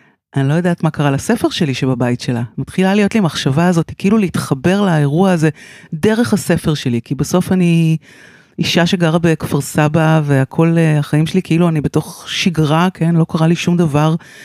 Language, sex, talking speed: Hebrew, female, 170 wpm